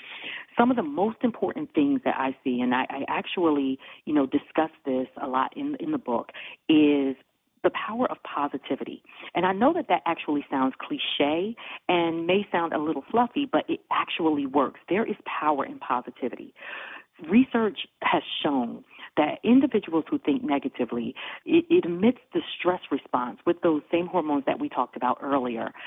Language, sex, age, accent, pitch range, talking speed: English, female, 40-59, American, 145-240 Hz, 170 wpm